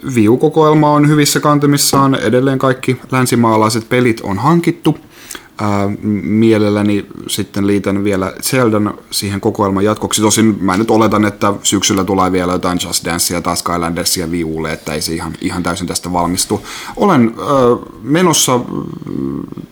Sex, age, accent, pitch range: male, 30-49, native, 90-115 Hz